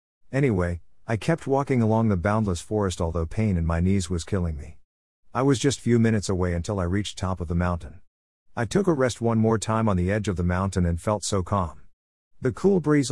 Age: 50-69